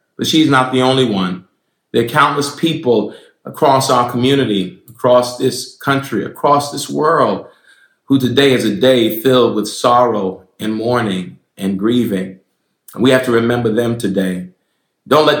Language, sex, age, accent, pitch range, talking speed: English, male, 40-59, American, 105-130 Hz, 155 wpm